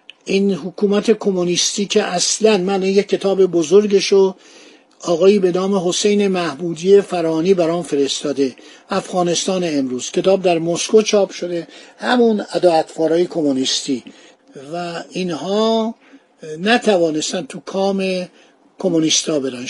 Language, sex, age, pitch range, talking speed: Persian, male, 50-69, 170-200 Hz, 110 wpm